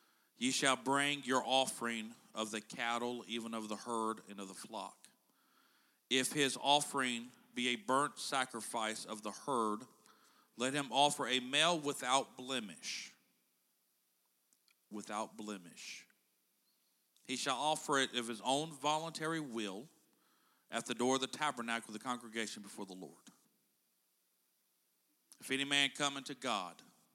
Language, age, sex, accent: English, 50-69, male, American